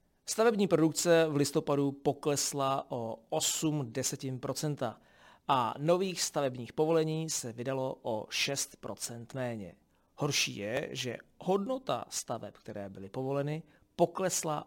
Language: Czech